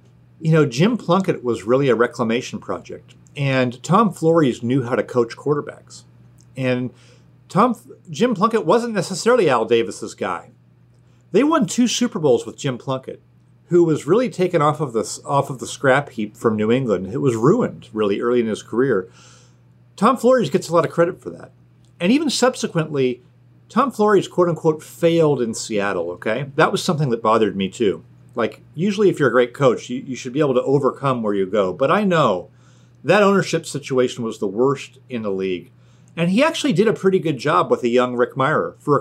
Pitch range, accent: 120-180 Hz, American